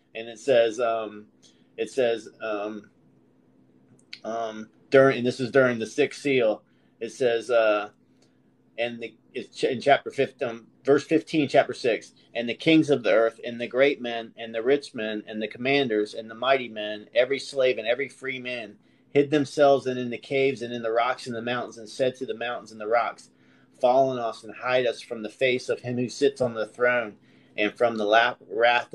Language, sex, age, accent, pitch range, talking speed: English, male, 30-49, American, 110-135 Hz, 200 wpm